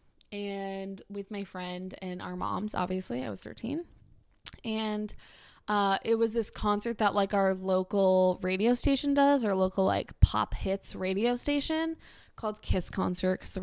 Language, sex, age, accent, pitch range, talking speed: English, female, 20-39, American, 185-220 Hz, 160 wpm